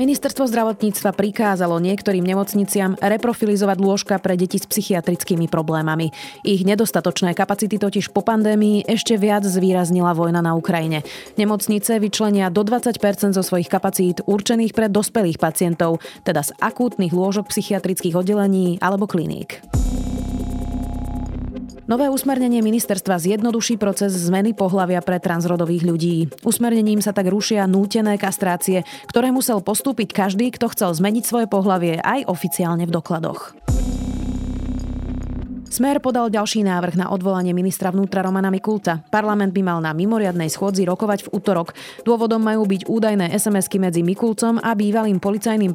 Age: 30-49